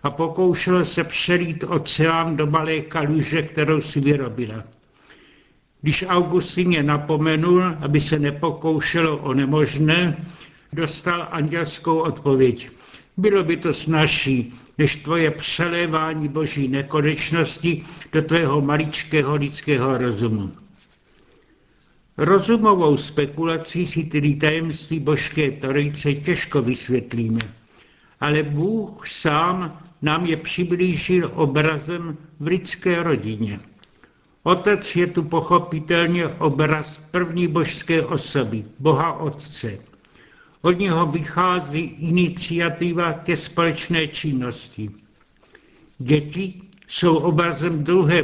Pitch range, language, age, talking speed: 145-170 Hz, Czech, 70-89, 95 wpm